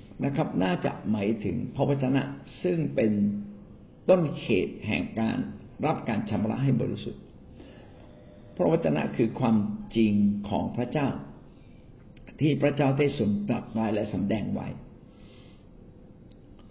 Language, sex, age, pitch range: Thai, male, 60-79, 105-135 Hz